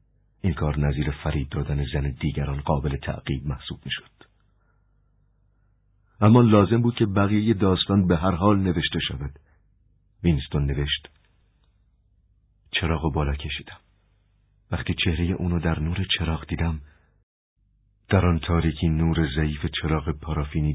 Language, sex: Persian, male